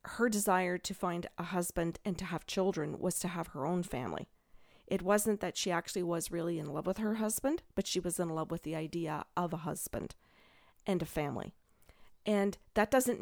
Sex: female